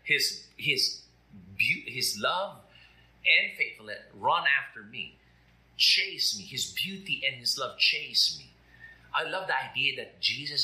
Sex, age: male, 50-69